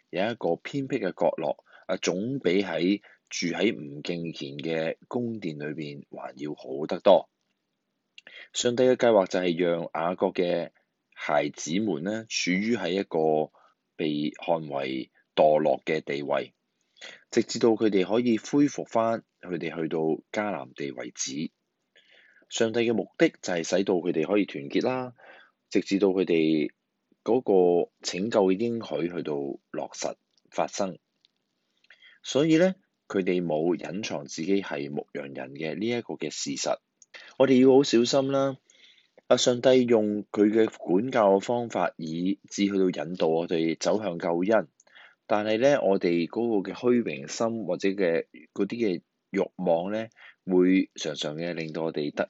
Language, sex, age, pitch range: Chinese, male, 20-39, 80-115 Hz